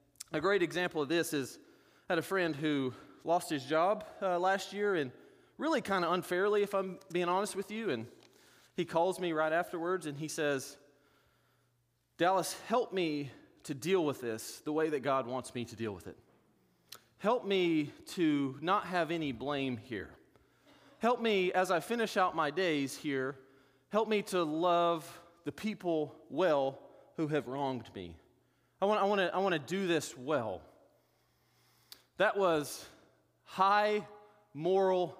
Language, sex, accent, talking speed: English, male, American, 165 wpm